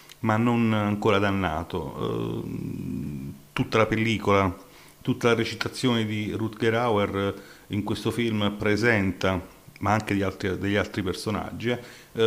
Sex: male